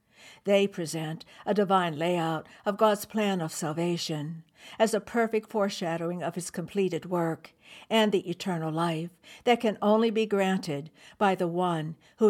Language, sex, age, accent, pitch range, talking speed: English, female, 60-79, American, 160-195 Hz, 150 wpm